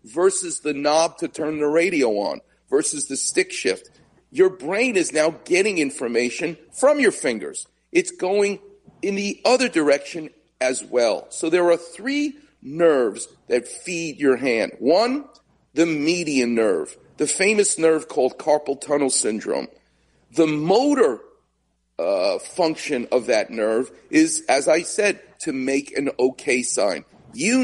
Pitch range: 145-240 Hz